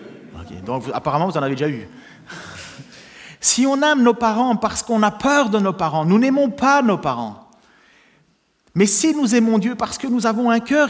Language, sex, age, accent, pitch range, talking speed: French, male, 40-59, French, 130-195 Hz, 195 wpm